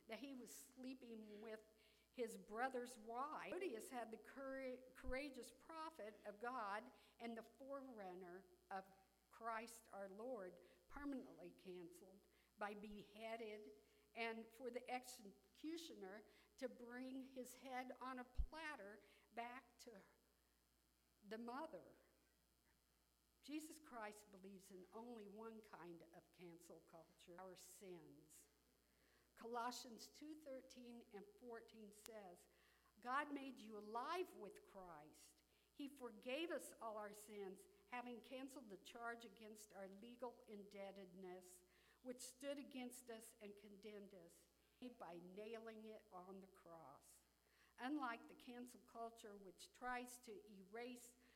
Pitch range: 195-250 Hz